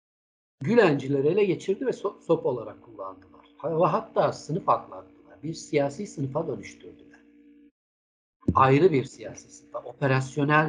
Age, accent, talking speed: 60-79, native, 110 wpm